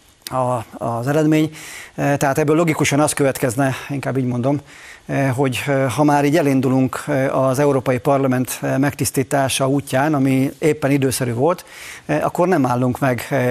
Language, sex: Hungarian, male